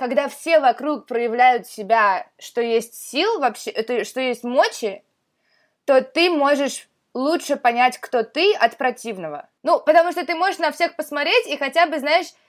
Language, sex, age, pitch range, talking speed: Russian, female, 20-39, 240-315 Hz, 160 wpm